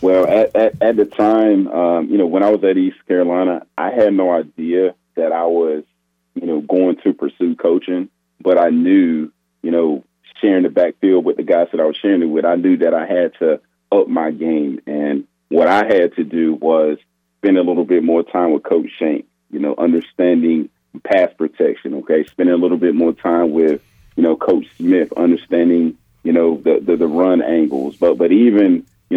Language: English